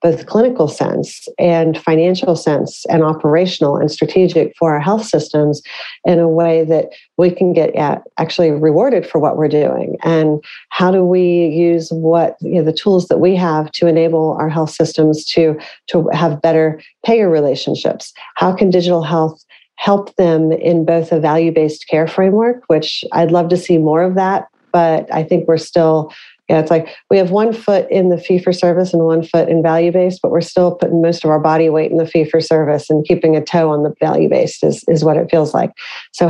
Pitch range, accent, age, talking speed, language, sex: 160-175 Hz, American, 40-59, 205 wpm, English, female